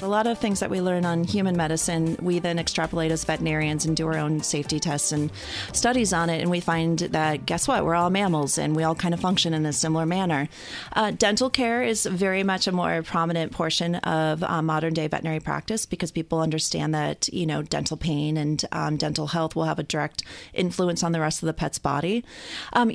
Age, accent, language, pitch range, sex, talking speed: 30-49, American, English, 155-190 Hz, female, 220 wpm